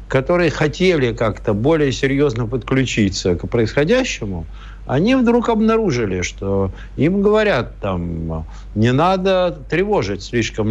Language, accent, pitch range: Russian, native, 100-160 Hz